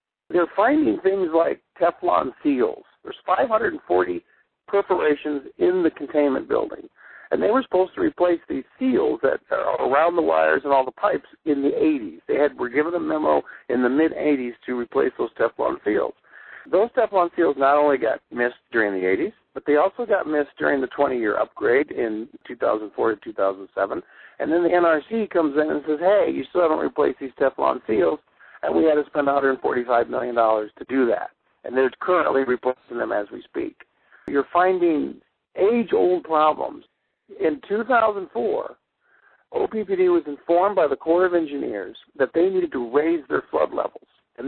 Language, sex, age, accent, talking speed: English, male, 50-69, American, 170 wpm